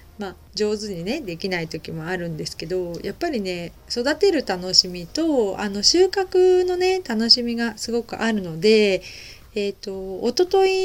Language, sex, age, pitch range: Japanese, female, 40-59, 175-235 Hz